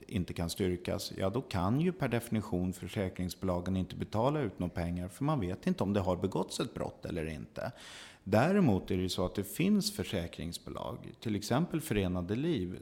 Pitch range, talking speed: 90-115 Hz, 185 wpm